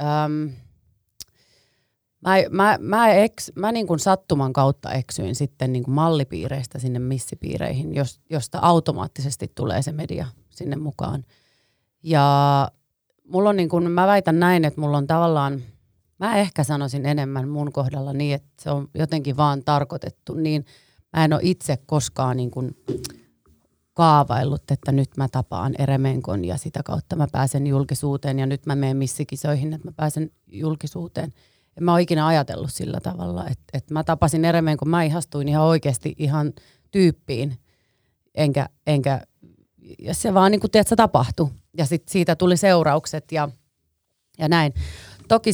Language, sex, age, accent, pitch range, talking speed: Finnish, female, 30-49, native, 135-170 Hz, 125 wpm